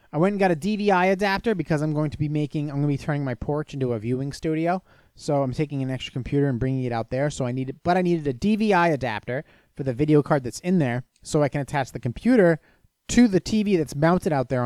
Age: 30-49